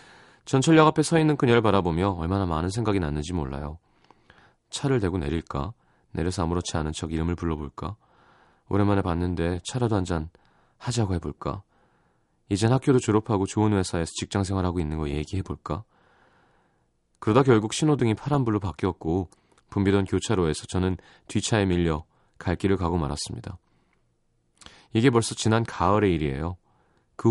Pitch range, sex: 85-115 Hz, male